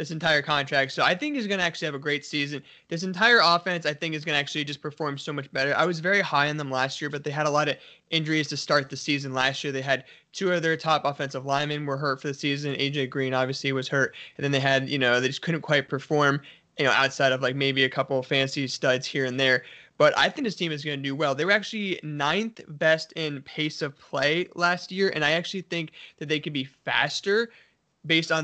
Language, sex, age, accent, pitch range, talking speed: English, male, 20-39, American, 140-165 Hz, 255 wpm